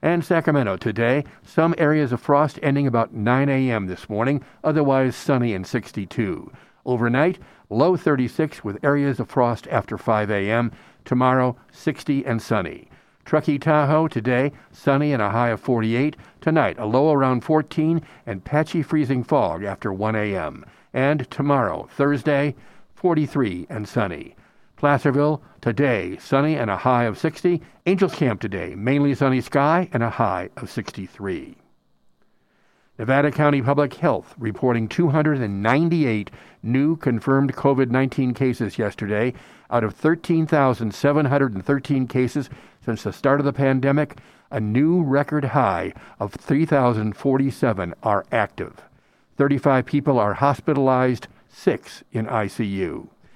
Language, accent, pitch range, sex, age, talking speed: English, American, 115-145 Hz, male, 60-79, 125 wpm